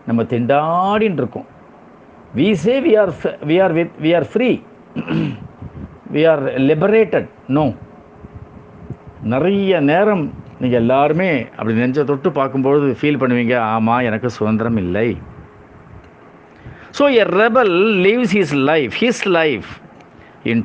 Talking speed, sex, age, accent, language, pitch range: 95 wpm, male, 50-69, native, Tamil, 135-190 Hz